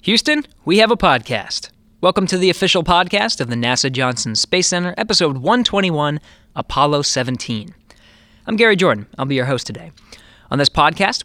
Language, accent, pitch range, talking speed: English, American, 130-185 Hz, 165 wpm